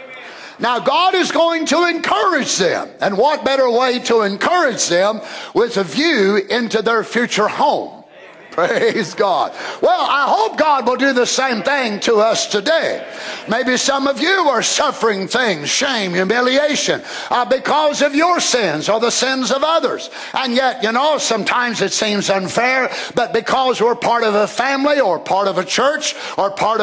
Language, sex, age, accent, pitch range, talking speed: English, male, 50-69, American, 220-285 Hz, 170 wpm